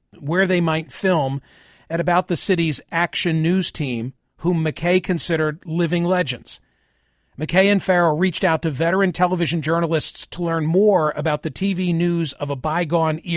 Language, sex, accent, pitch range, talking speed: English, male, American, 150-180 Hz, 155 wpm